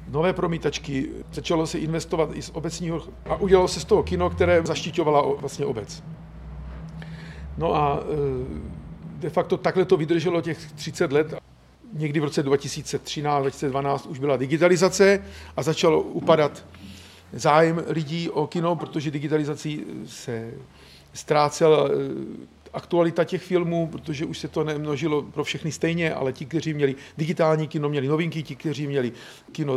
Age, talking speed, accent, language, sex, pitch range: 50-69, 140 wpm, native, Czech, male, 140-160 Hz